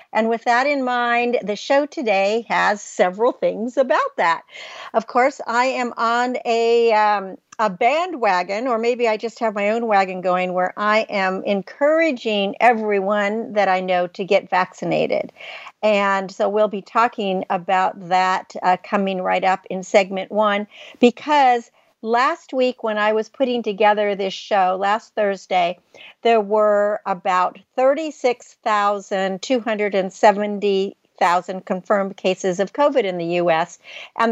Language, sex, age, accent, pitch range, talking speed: English, female, 50-69, American, 200-250 Hz, 140 wpm